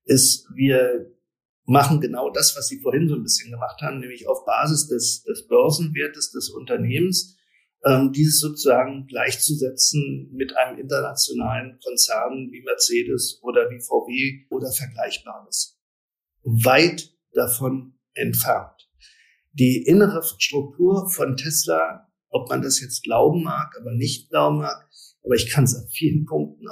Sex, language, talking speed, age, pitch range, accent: male, German, 135 wpm, 50-69, 130-185 Hz, German